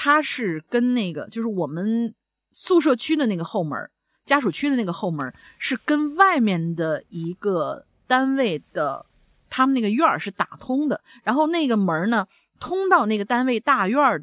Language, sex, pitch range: Chinese, female, 175-260 Hz